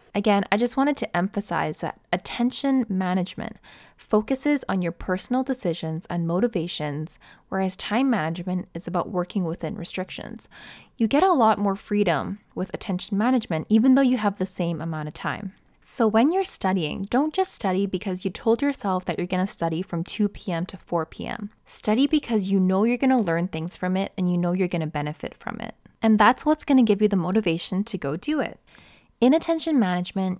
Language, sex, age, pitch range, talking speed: English, female, 10-29, 175-235 Hz, 190 wpm